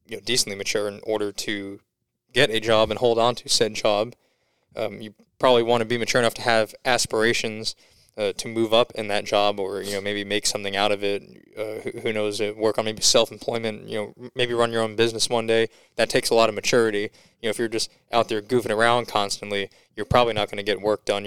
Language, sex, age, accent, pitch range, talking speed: English, male, 20-39, American, 105-115 Hz, 235 wpm